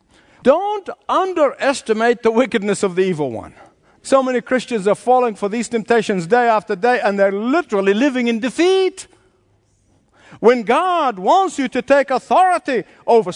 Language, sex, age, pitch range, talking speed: English, male, 50-69, 185-255 Hz, 150 wpm